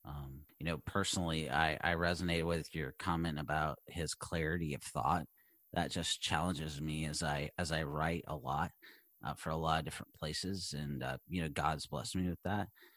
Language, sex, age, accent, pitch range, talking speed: English, male, 30-49, American, 80-95 Hz, 195 wpm